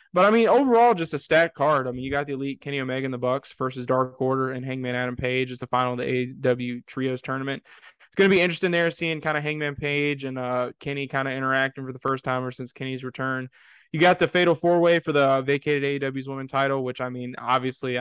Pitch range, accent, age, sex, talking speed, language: 130-155 Hz, American, 20-39, male, 245 wpm, English